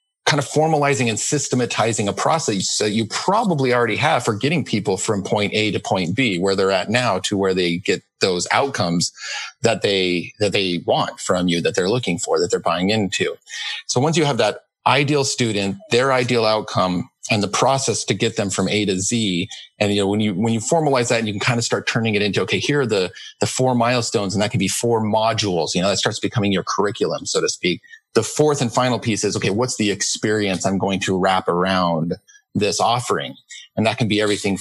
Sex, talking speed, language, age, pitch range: male, 225 wpm, English, 40-59, 100-125 Hz